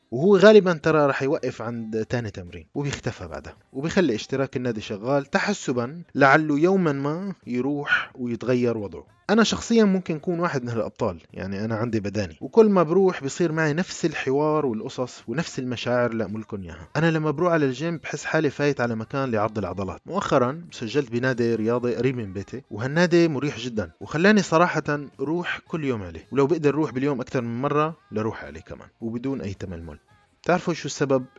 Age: 20-39